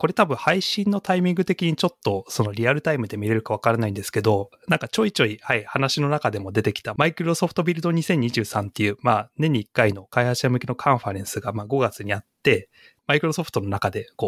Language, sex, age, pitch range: Japanese, male, 30-49, 110-155 Hz